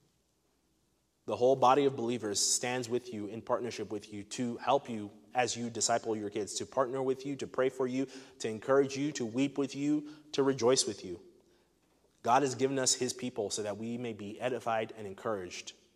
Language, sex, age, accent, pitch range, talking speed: English, male, 30-49, American, 105-130 Hz, 200 wpm